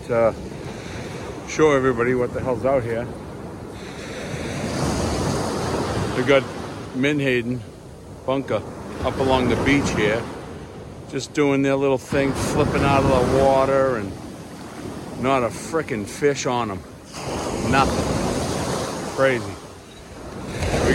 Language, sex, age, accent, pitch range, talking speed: English, male, 60-79, American, 120-140 Hz, 105 wpm